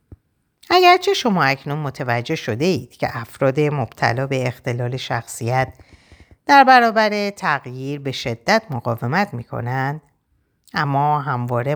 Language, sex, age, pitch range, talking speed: Persian, female, 50-69, 120-155 Hz, 110 wpm